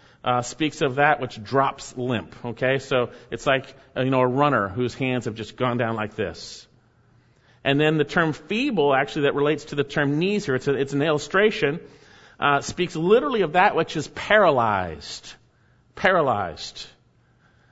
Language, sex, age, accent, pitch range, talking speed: English, male, 40-59, American, 130-185 Hz, 170 wpm